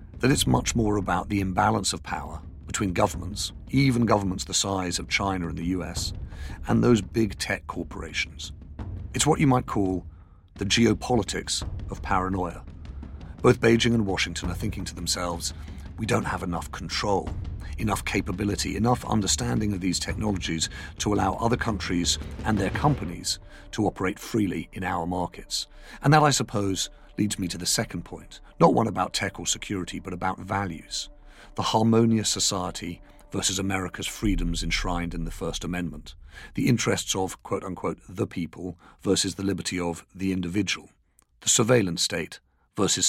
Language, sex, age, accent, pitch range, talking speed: English, male, 50-69, British, 85-110 Hz, 160 wpm